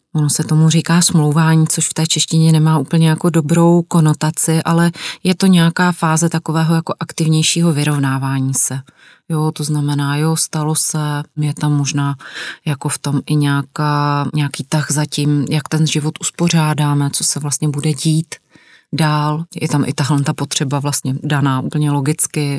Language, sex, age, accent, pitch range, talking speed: Czech, female, 30-49, native, 145-165 Hz, 160 wpm